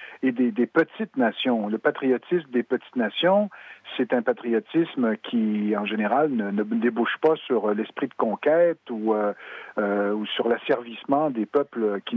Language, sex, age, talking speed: French, male, 50-69, 155 wpm